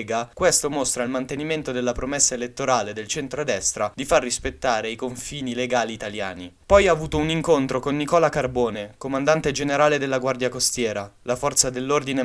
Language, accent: Italian, native